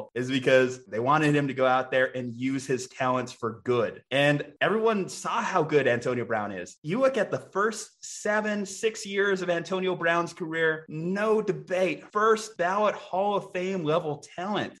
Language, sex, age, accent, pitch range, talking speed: English, male, 20-39, American, 140-200 Hz, 180 wpm